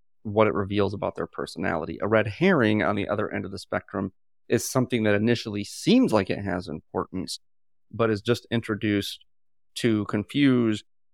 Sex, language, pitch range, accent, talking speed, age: male, English, 85-110 Hz, American, 165 wpm, 30-49